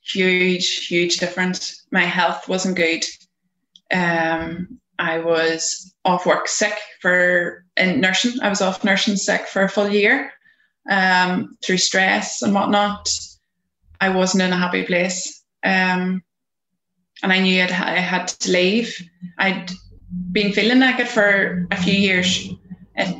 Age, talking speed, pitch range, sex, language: 20-39, 135 wpm, 180-205 Hz, female, English